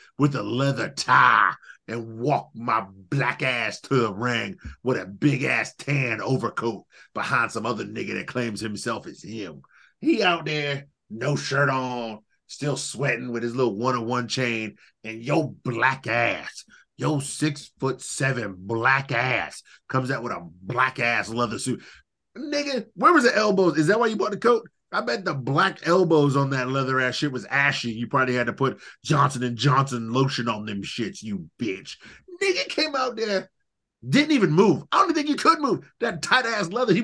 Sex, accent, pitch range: male, American, 120-170 Hz